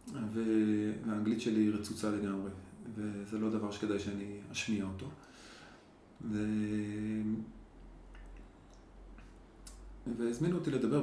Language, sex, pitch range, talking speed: Hebrew, male, 105-115 Hz, 80 wpm